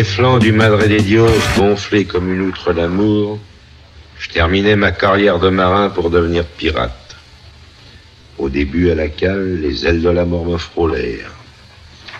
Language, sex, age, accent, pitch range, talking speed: French, male, 60-79, French, 80-105 Hz, 155 wpm